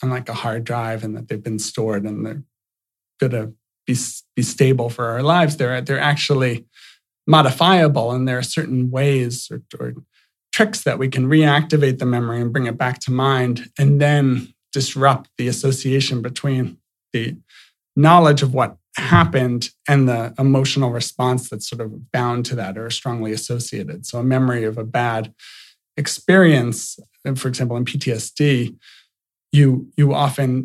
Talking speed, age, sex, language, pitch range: 160 wpm, 40-59, male, English, 120-140 Hz